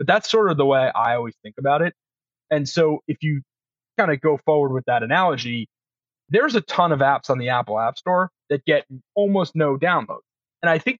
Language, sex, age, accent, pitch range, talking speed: English, male, 30-49, American, 125-155 Hz, 220 wpm